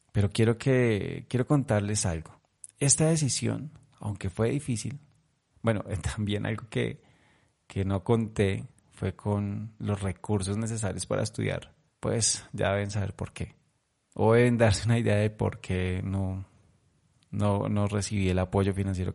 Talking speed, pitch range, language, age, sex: 145 wpm, 100-125 Hz, Spanish, 30-49, male